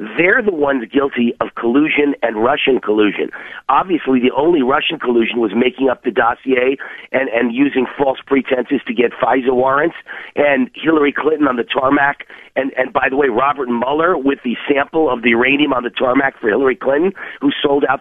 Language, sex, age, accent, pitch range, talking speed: English, male, 50-69, American, 130-165 Hz, 185 wpm